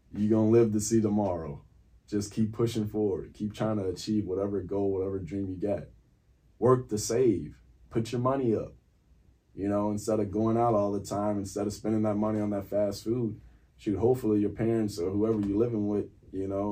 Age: 20-39